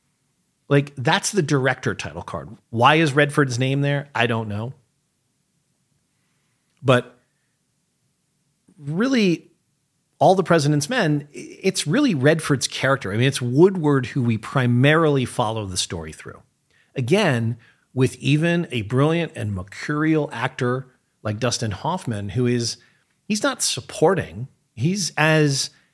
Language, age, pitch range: English, 40-59, 115-150 Hz